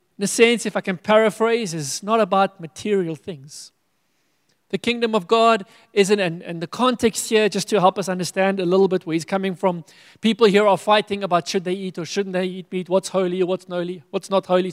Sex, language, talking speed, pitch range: male, English, 220 wpm, 170-215 Hz